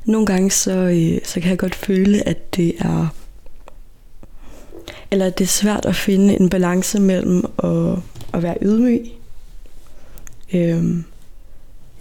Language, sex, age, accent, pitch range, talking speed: Danish, female, 20-39, native, 175-195 Hz, 135 wpm